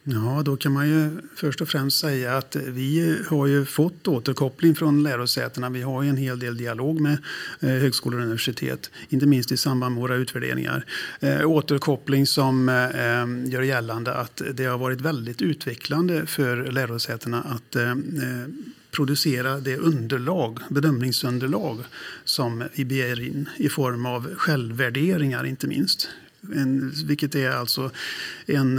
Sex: male